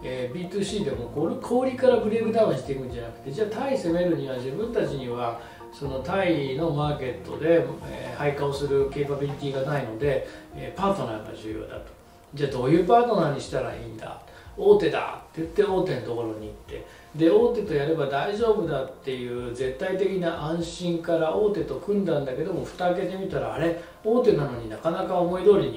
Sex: male